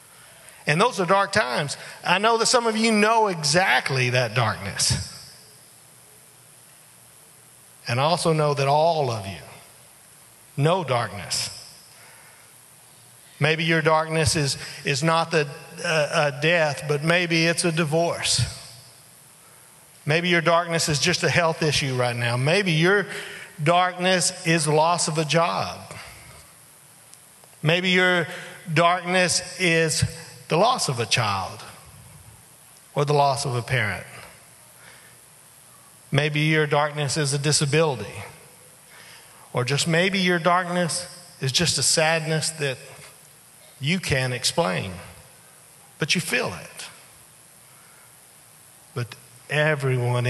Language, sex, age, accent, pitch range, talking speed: English, male, 50-69, American, 135-170 Hz, 115 wpm